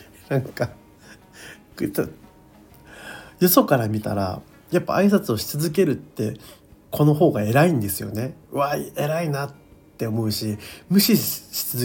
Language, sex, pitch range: Japanese, male, 105-140 Hz